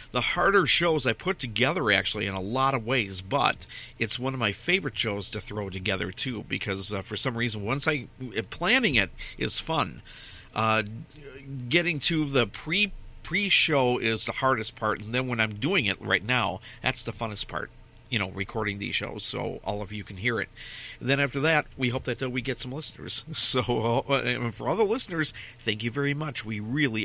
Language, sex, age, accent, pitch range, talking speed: English, male, 50-69, American, 105-135 Hz, 210 wpm